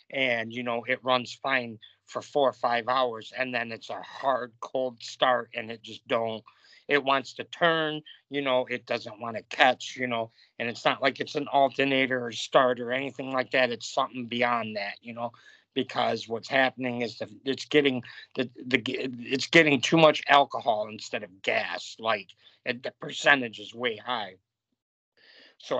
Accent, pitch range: American, 115-130 Hz